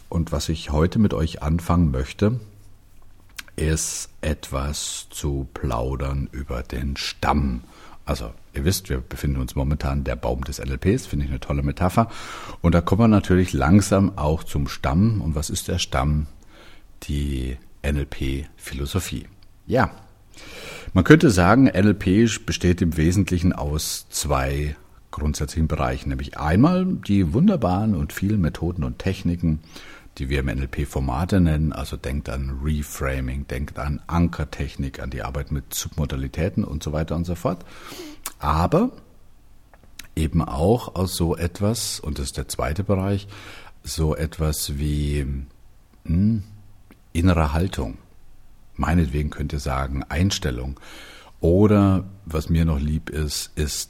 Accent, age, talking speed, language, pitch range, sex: German, 50-69, 135 wpm, German, 70-95 Hz, male